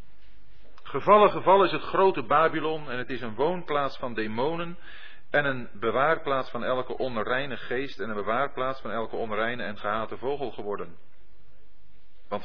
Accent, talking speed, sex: Dutch, 150 wpm, male